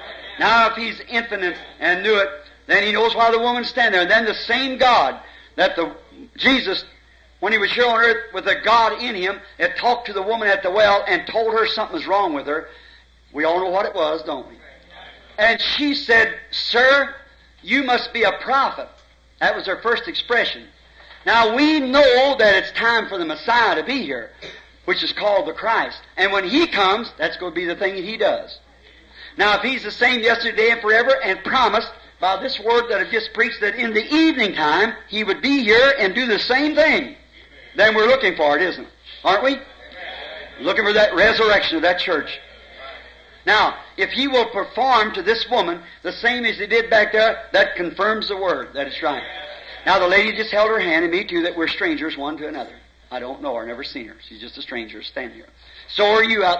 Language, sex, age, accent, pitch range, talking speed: English, male, 50-69, American, 200-255 Hz, 215 wpm